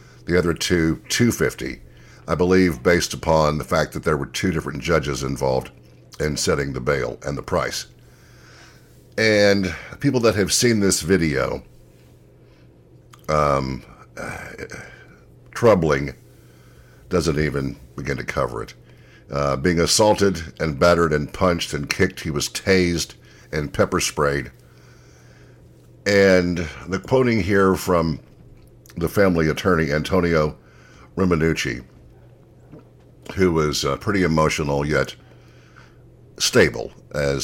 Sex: male